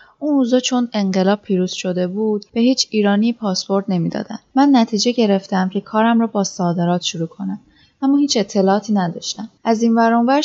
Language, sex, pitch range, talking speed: Persian, female, 190-230 Hz, 165 wpm